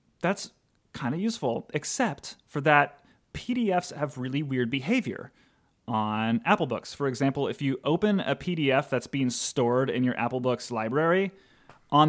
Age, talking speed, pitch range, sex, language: 30-49, 155 wpm, 120-160 Hz, male, English